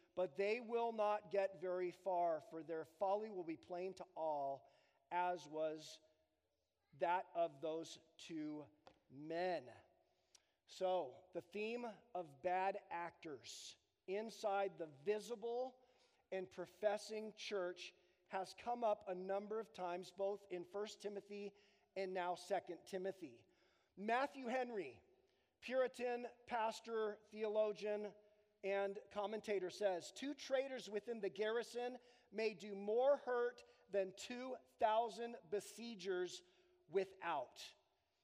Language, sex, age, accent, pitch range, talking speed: English, male, 40-59, American, 185-245 Hz, 110 wpm